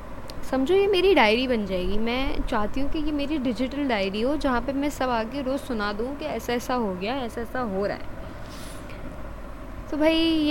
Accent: Indian